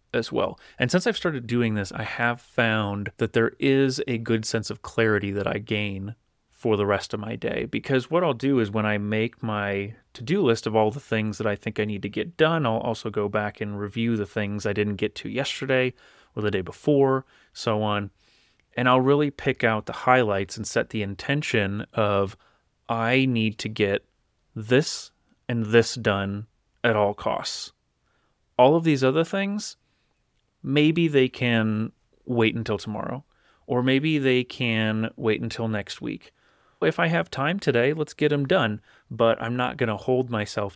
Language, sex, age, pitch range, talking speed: English, male, 30-49, 105-130 Hz, 190 wpm